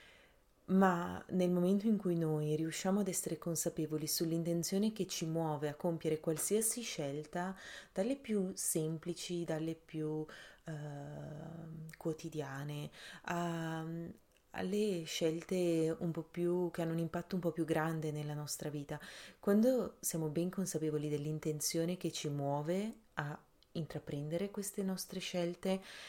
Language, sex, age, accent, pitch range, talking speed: Italian, female, 30-49, native, 155-185 Hz, 125 wpm